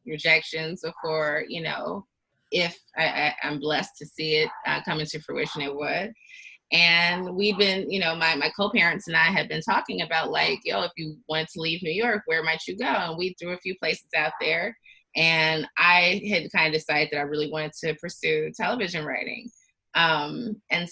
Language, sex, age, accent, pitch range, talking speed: English, female, 20-39, American, 155-180 Hz, 200 wpm